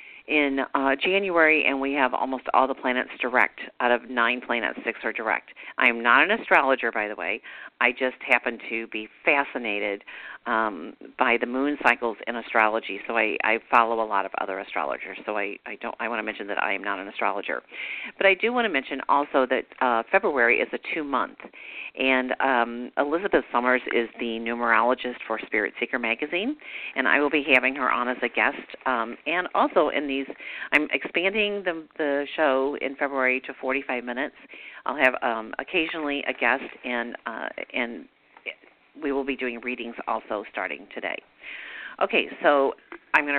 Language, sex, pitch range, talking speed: English, female, 120-145 Hz, 185 wpm